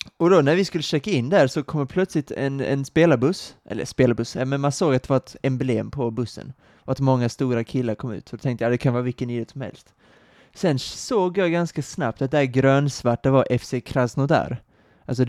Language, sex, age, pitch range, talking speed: Swedish, male, 20-39, 120-145 Hz, 230 wpm